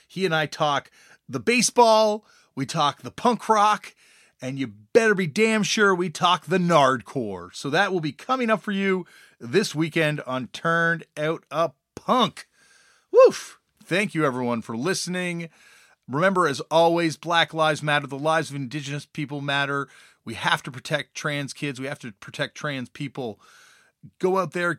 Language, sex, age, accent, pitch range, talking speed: English, male, 30-49, American, 140-190 Hz, 165 wpm